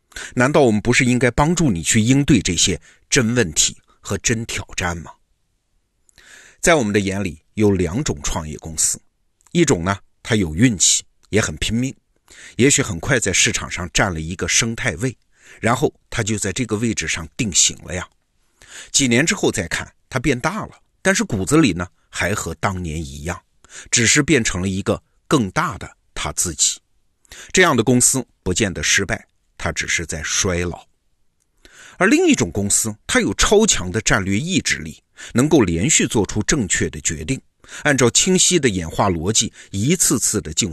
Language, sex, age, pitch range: Chinese, male, 50-69, 85-120 Hz